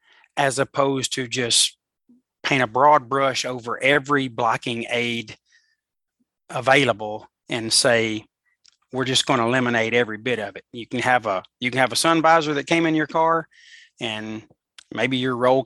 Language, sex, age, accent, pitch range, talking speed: English, male, 30-49, American, 120-145 Hz, 165 wpm